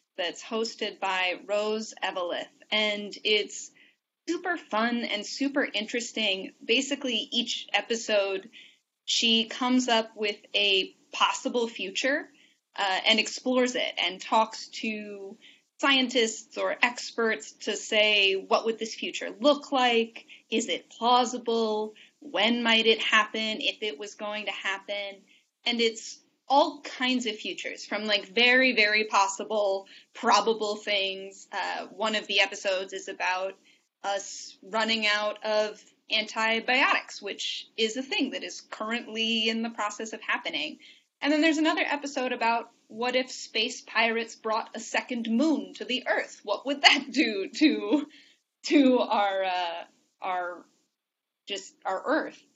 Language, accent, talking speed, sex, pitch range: English, American, 135 wpm, female, 210-270 Hz